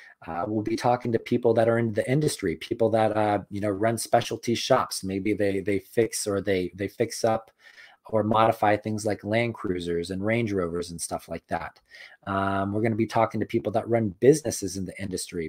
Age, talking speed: 30-49, 215 wpm